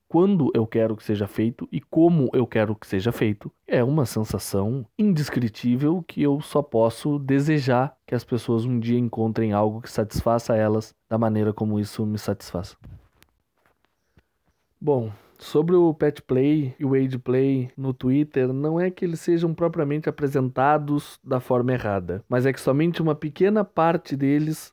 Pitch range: 115-150 Hz